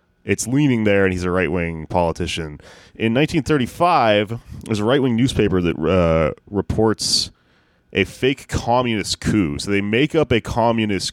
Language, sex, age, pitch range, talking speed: English, male, 30-49, 85-110 Hz, 145 wpm